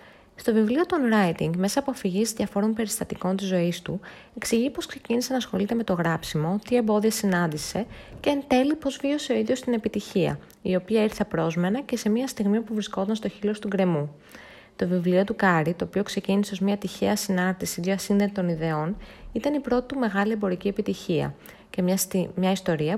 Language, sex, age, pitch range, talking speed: Greek, female, 20-39, 175-230 Hz, 180 wpm